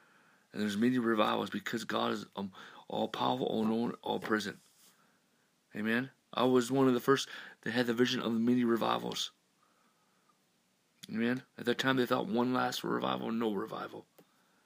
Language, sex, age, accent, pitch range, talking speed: English, male, 50-69, American, 110-125 Hz, 160 wpm